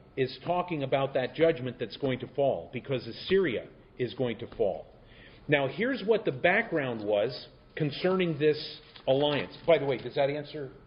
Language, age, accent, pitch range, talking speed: Italian, 50-69, American, 130-175 Hz, 165 wpm